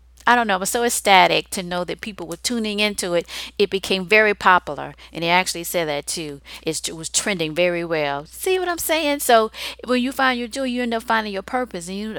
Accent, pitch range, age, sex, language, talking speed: American, 180-225 Hz, 40-59, female, English, 240 wpm